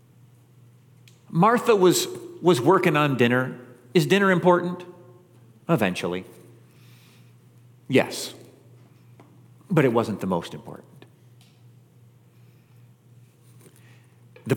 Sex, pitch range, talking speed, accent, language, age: male, 120-175 Hz, 75 wpm, American, English, 50-69